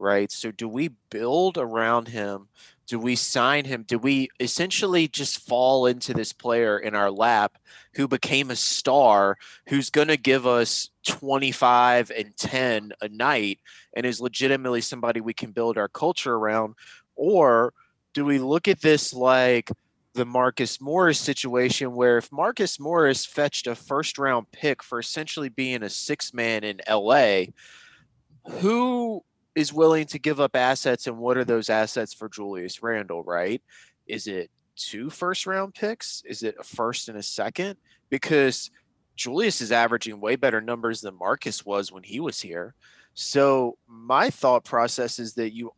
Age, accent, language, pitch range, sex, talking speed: 20-39, American, English, 115-145 Hz, male, 165 wpm